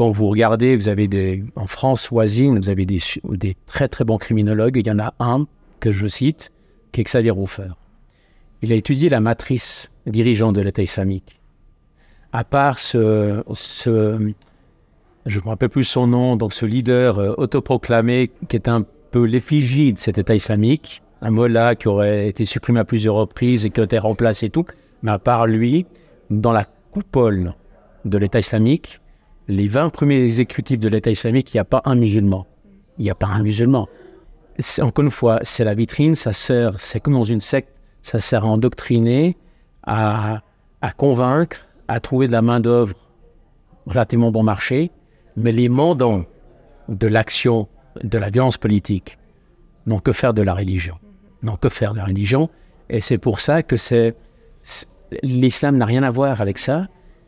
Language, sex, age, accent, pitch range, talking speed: French, male, 50-69, French, 105-130 Hz, 180 wpm